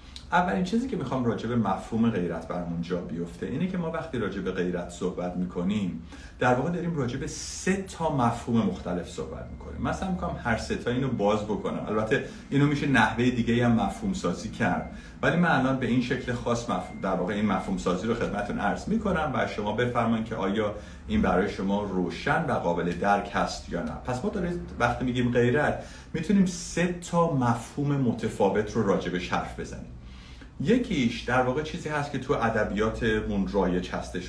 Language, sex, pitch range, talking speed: Persian, male, 95-135 Hz, 175 wpm